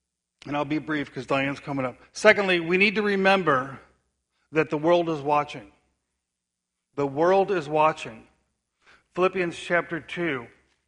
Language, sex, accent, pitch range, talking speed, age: English, male, American, 130-175 Hz, 140 wpm, 50-69